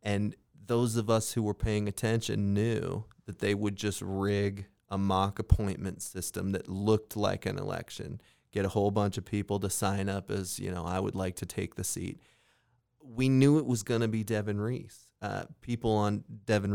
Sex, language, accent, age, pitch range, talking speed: male, English, American, 30-49, 100-120 Hz, 195 wpm